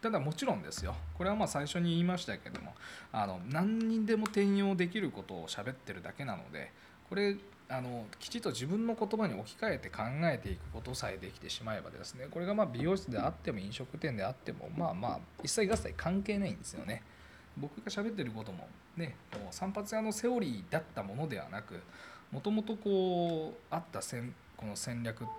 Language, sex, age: Japanese, male, 20-39